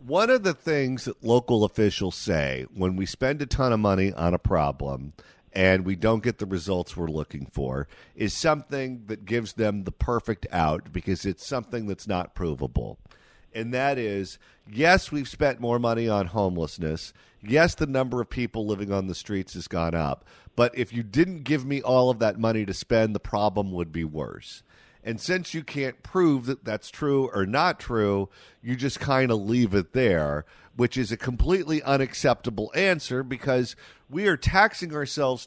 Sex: male